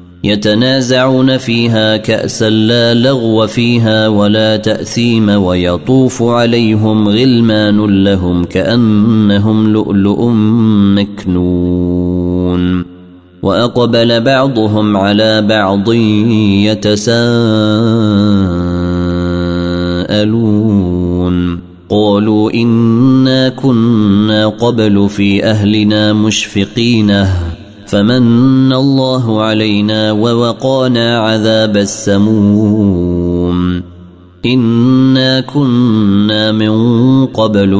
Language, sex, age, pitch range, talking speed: Arabic, male, 30-49, 100-115 Hz, 60 wpm